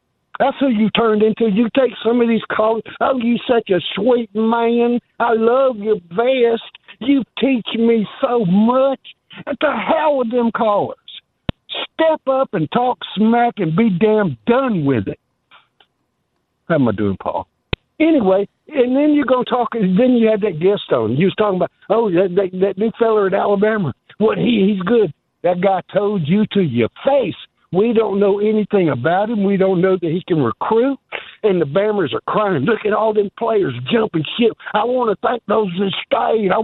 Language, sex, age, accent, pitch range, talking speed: English, male, 60-79, American, 185-235 Hz, 195 wpm